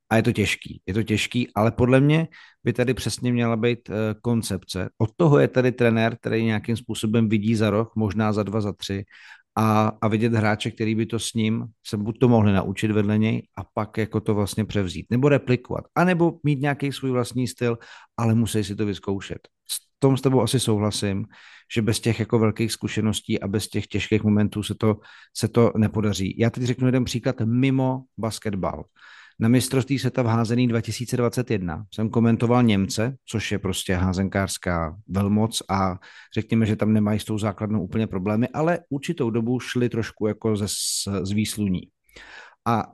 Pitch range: 105-120 Hz